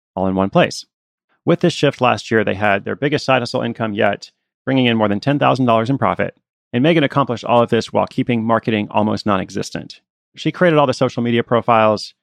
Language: English